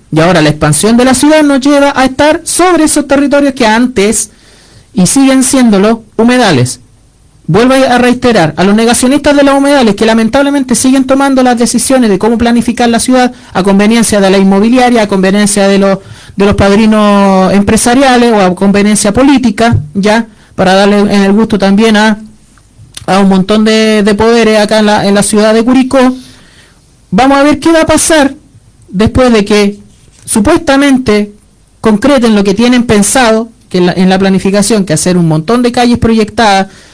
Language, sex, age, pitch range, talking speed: Spanish, male, 40-59, 190-245 Hz, 175 wpm